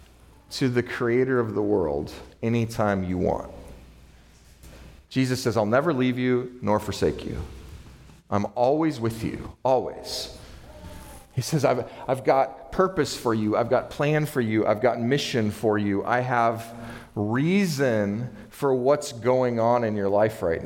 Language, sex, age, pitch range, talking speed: English, male, 40-59, 95-130 Hz, 150 wpm